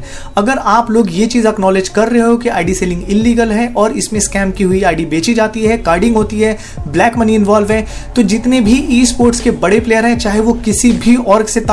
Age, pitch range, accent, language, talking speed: 30-49, 205-245 Hz, native, Hindi, 60 wpm